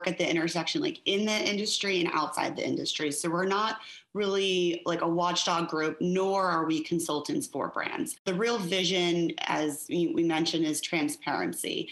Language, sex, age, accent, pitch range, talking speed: English, female, 30-49, American, 155-190 Hz, 165 wpm